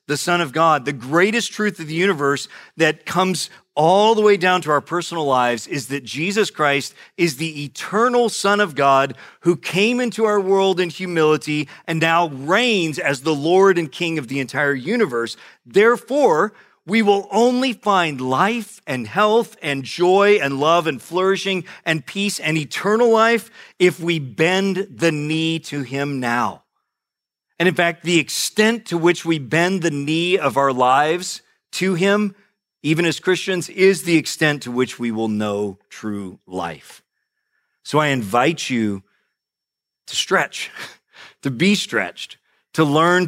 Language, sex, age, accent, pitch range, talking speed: English, male, 40-59, American, 125-180 Hz, 160 wpm